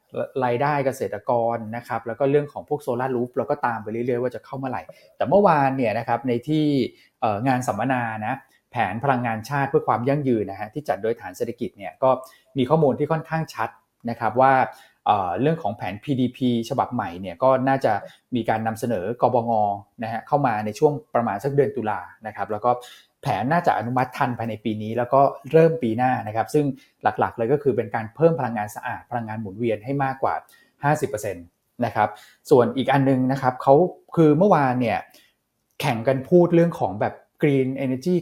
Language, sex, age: Thai, male, 20-39